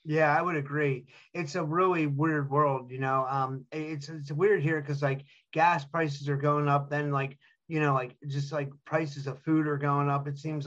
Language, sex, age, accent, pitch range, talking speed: English, male, 30-49, American, 135-155 Hz, 215 wpm